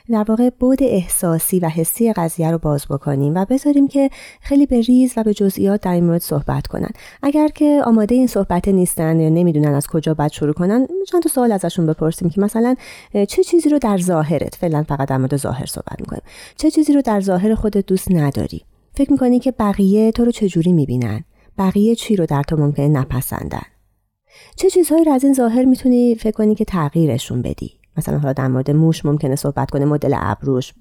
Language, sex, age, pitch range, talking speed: Persian, female, 30-49, 145-225 Hz, 195 wpm